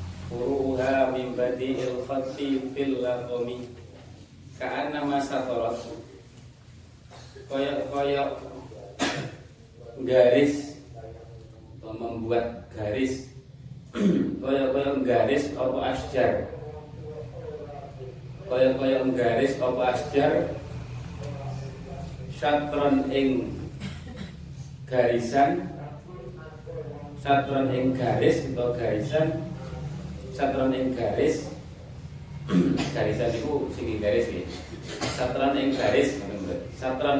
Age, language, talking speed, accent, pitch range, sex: 30-49, Indonesian, 55 wpm, native, 125-140 Hz, male